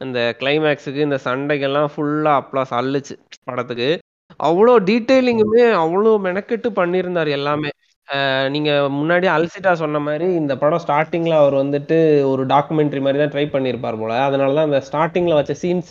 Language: Tamil